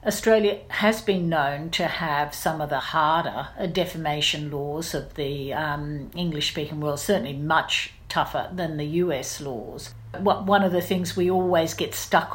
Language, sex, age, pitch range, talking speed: English, female, 50-69, 145-190 Hz, 155 wpm